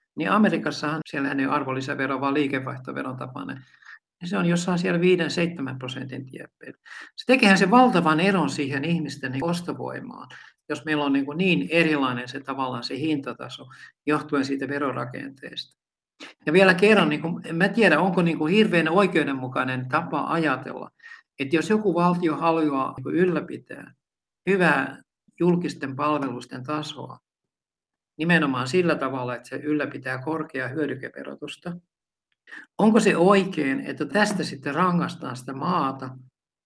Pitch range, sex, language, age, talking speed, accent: 140-180 Hz, male, Finnish, 60-79, 125 wpm, native